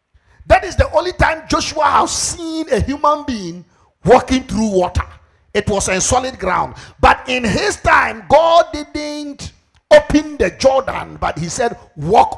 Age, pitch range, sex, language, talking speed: 50-69, 180-300 Hz, male, English, 155 wpm